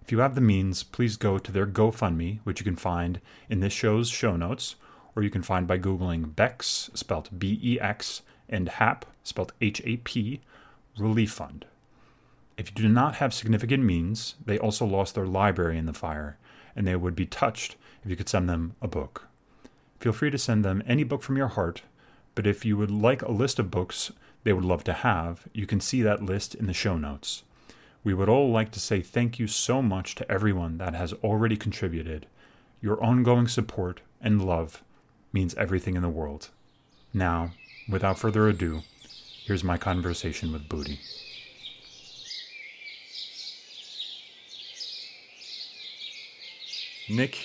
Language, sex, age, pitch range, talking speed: English, male, 30-49, 90-115 Hz, 165 wpm